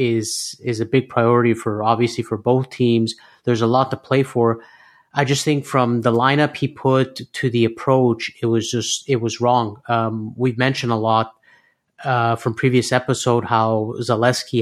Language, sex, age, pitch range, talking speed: English, male, 30-49, 115-130 Hz, 180 wpm